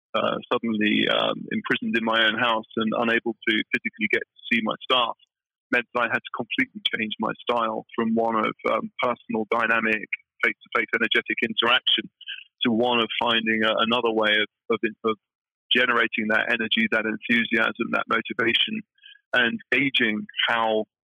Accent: British